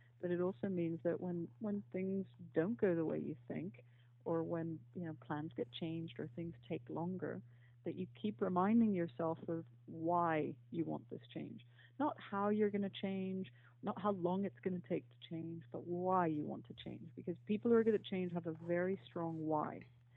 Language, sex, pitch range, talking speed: English, female, 155-185 Hz, 205 wpm